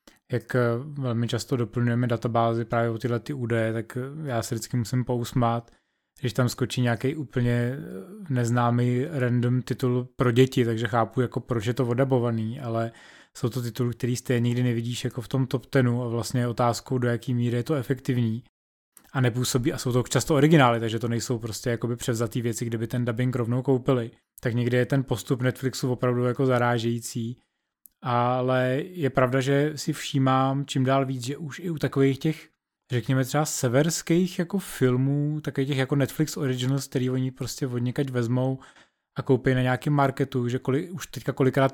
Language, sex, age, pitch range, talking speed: Czech, male, 20-39, 120-135 Hz, 180 wpm